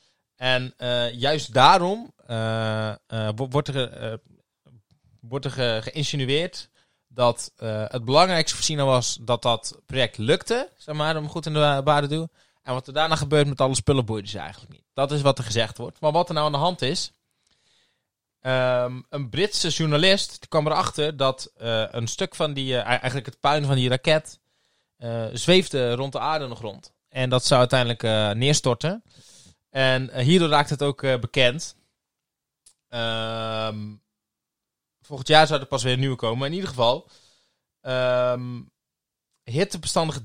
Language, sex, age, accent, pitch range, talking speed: Dutch, male, 20-39, Dutch, 120-150 Hz, 175 wpm